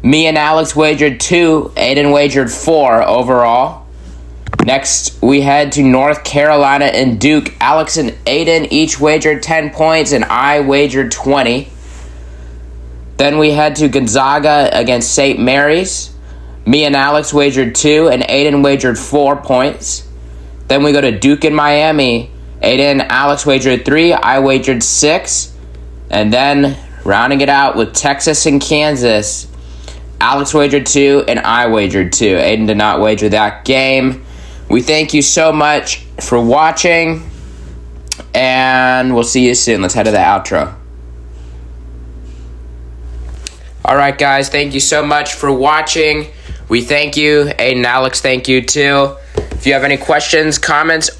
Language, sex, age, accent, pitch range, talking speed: English, male, 20-39, American, 90-150 Hz, 145 wpm